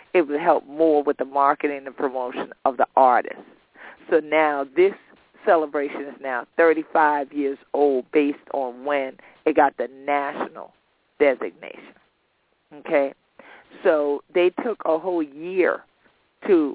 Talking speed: 135 wpm